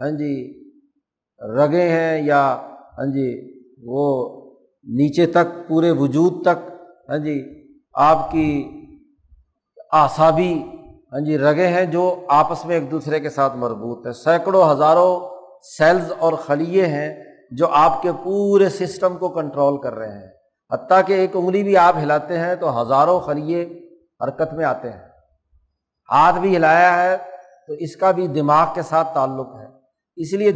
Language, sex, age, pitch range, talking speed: Urdu, male, 50-69, 145-180 Hz, 150 wpm